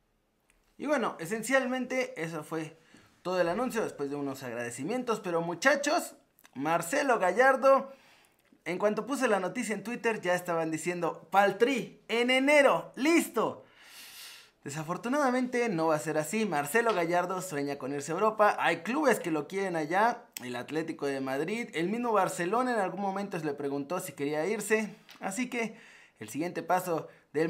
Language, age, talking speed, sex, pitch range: Spanish, 30-49, 155 wpm, male, 160-230 Hz